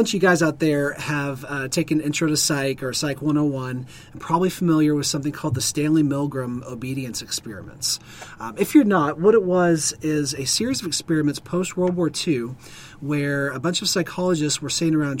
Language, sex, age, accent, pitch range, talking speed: English, male, 30-49, American, 130-155 Hz, 195 wpm